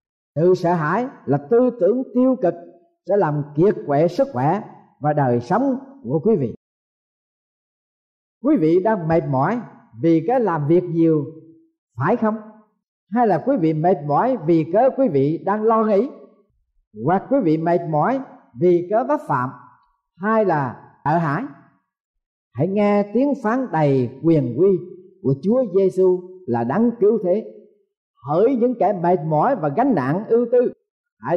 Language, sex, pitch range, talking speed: Vietnamese, male, 155-220 Hz, 160 wpm